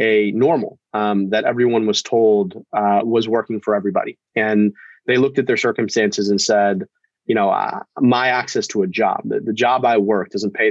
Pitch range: 105-125 Hz